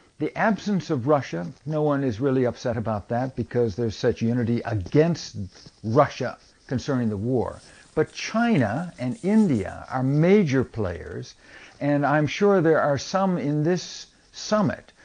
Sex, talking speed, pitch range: male, 145 wpm, 120-155 Hz